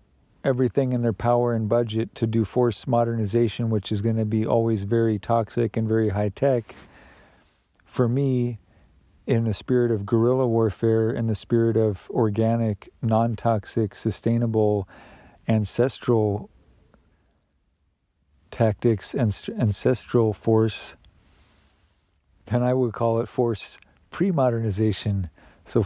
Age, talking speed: 50-69, 115 wpm